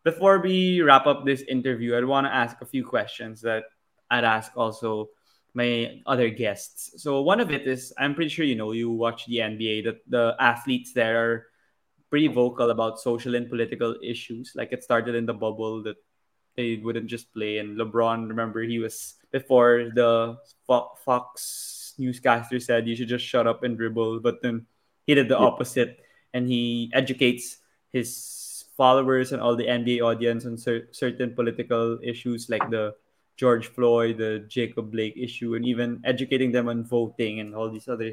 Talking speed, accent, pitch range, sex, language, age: 175 wpm, native, 115-125 Hz, male, Filipino, 20-39